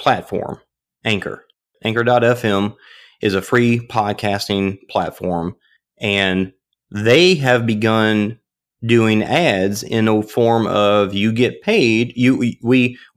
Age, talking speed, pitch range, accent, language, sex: 30-49, 110 wpm, 100-125 Hz, American, English, male